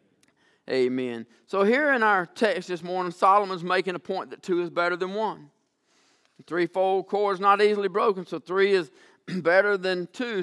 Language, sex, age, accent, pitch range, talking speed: English, male, 50-69, American, 195-245 Hz, 180 wpm